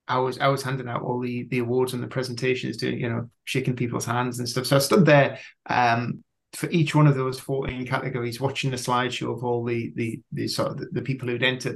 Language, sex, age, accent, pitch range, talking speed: English, male, 30-49, British, 125-145 Hz, 245 wpm